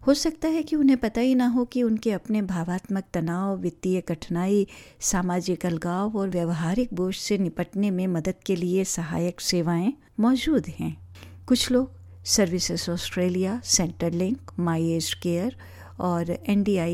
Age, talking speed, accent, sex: 50-69, 145 wpm, native, female